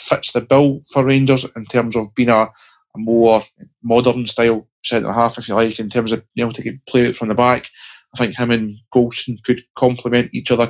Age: 20-39